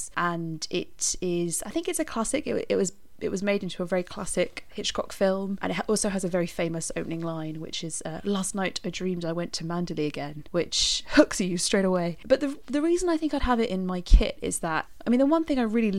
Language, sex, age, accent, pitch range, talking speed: English, female, 20-39, British, 170-210 Hz, 245 wpm